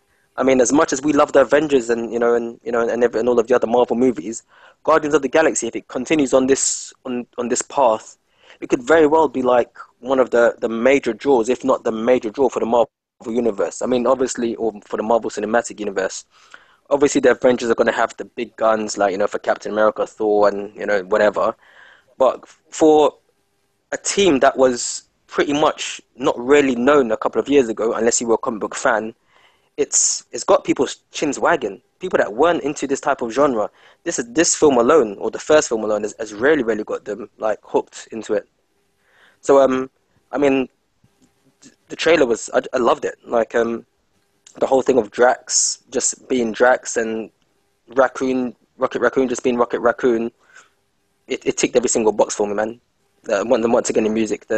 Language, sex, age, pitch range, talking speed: English, male, 20-39, 115-145 Hz, 205 wpm